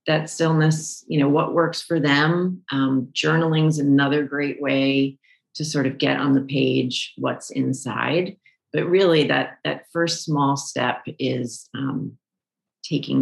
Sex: female